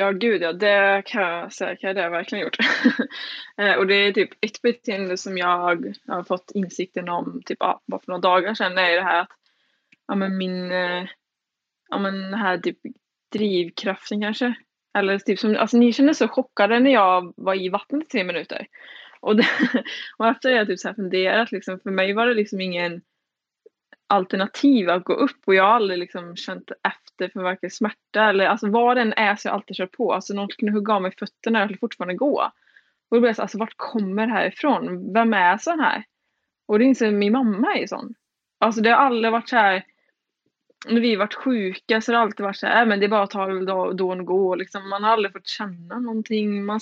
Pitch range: 190-230 Hz